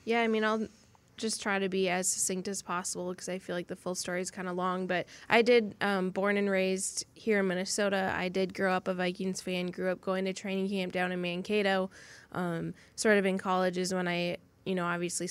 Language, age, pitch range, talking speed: English, 10-29, 180-195 Hz, 235 wpm